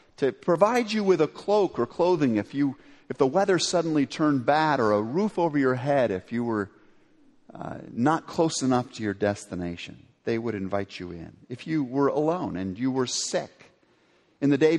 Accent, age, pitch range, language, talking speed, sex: American, 50-69, 145-220 Hz, English, 195 wpm, male